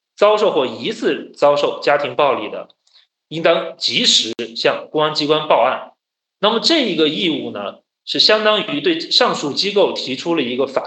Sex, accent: male, native